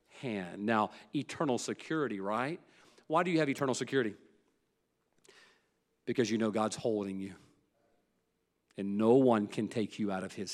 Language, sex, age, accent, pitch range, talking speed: English, male, 40-59, American, 110-135 Hz, 150 wpm